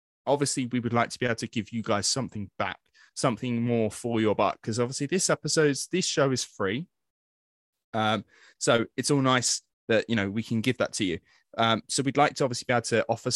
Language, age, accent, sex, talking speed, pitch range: English, 20-39, British, male, 225 wpm, 105-130 Hz